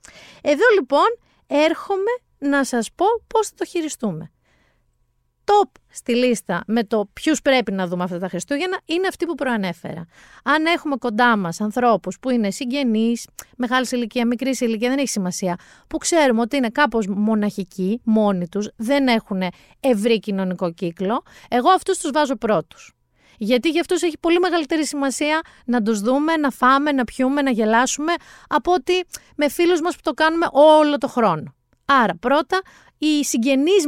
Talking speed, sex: 160 wpm, female